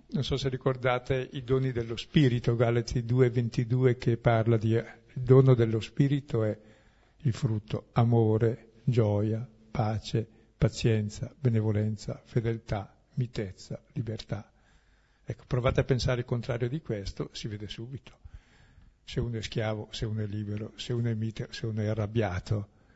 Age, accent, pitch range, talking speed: 50-69, native, 110-130 Hz, 145 wpm